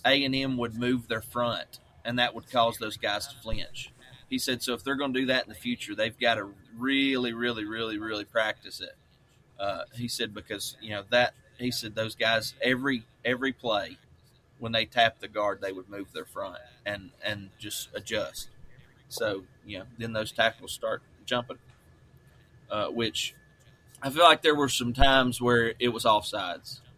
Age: 30-49